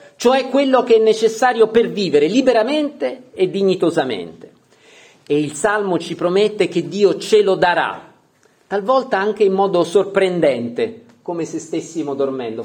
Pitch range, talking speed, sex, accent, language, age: 145-210 Hz, 140 wpm, male, native, Italian, 40-59